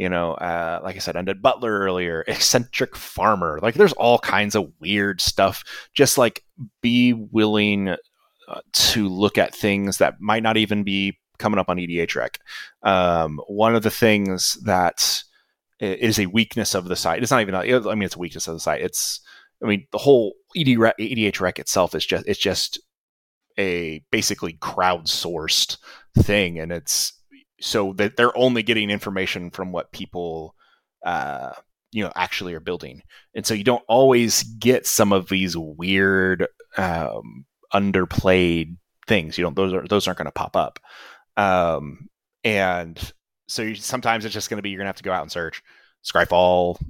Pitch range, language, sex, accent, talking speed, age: 90-110 Hz, English, male, American, 170 wpm, 30-49